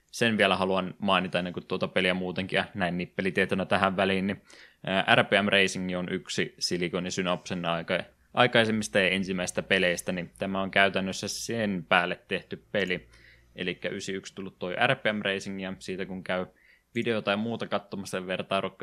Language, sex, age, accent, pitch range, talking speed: Finnish, male, 20-39, native, 90-100 Hz, 160 wpm